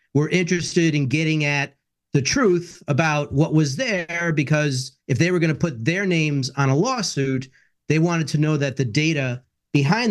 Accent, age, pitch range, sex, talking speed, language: American, 40-59, 135-165 Hz, male, 180 wpm, English